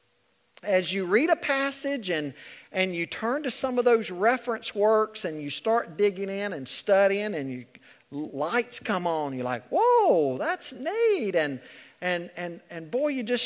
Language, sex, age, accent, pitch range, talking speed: English, male, 50-69, American, 165-270 Hz, 175 wpm